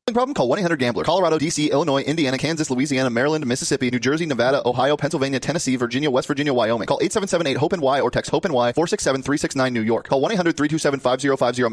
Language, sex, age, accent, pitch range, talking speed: English, male, 30-49, American, 125-155 Hz, 195 wpm